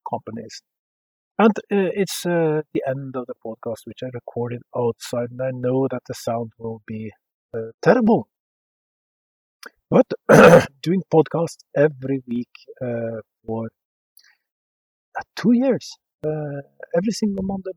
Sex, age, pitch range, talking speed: male, 50-69, 120-165 Hz, 130 wpm